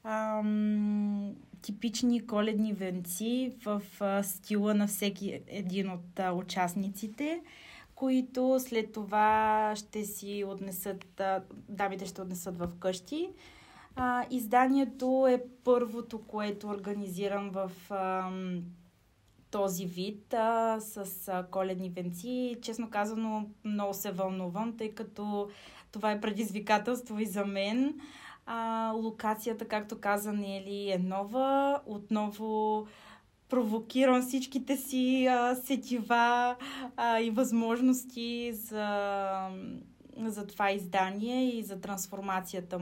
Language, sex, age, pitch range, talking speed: Bulgarian, female, 20-39, 195-245 Hz, 95 wpm